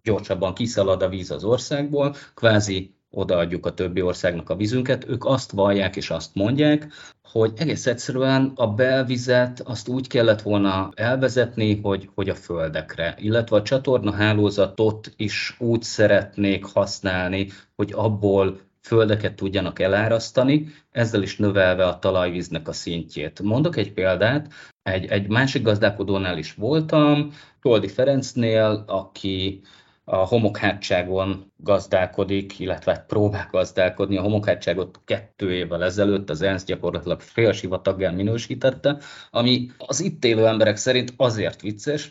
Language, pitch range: Hungarian, 95-125 Hz